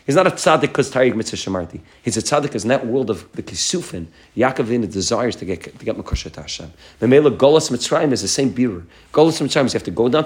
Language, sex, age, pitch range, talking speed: English, male, 40-59, 115-150 Hz, 220 wpm